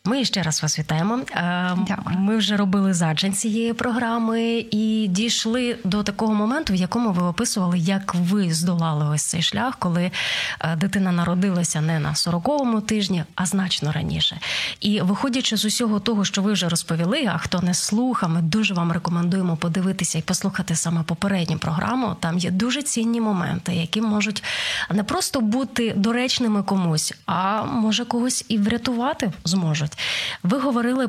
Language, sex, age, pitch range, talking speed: Ukrainian, female, 20-39, 180-240 Hz, 150 wpm